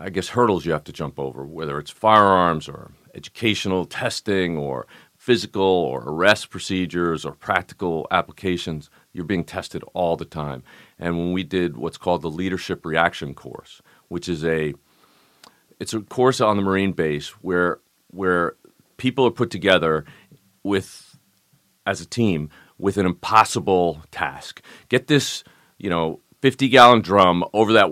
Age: 40-59